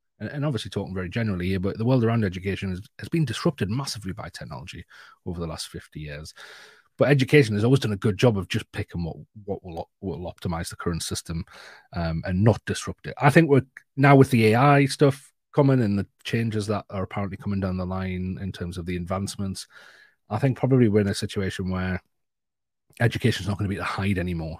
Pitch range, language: 90-110 Hz, English